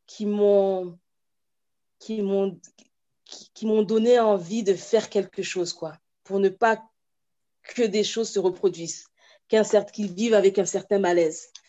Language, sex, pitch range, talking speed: French, female, 175-210 Hz, 150 wpm